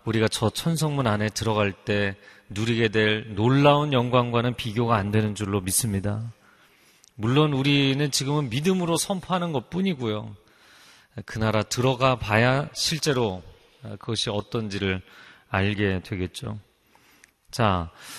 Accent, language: native, Korean